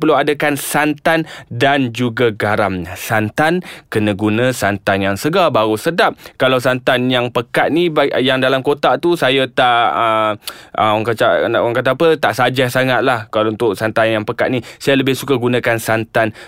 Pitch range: 115-165 Hz